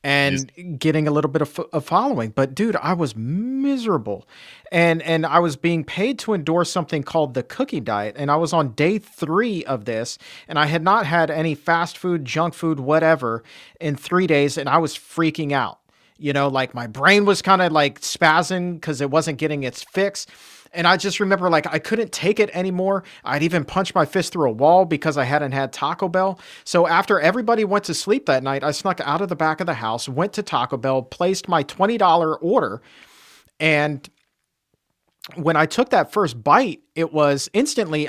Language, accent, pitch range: English, American, 145-190 Hz